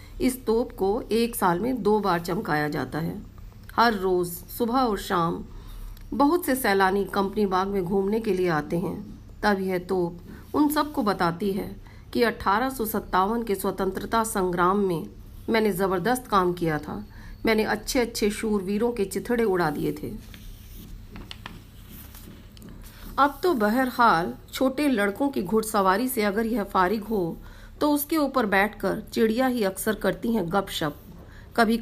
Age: 40-59